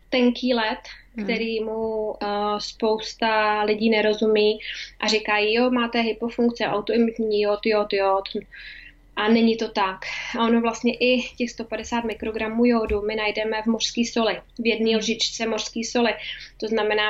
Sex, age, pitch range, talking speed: female, 20-39, 205-225 Hz, 140 wpm